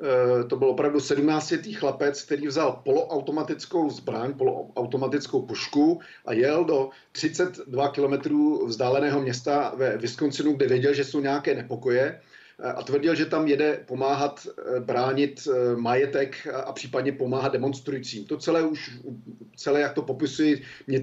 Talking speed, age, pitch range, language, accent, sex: 130 wpm, 40-59, 130-150 Hz, Czech, native, male